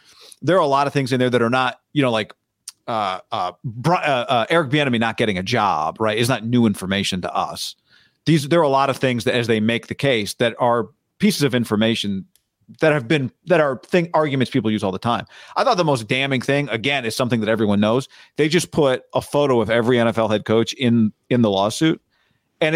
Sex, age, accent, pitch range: male, 40-59, American, 110-140 Hz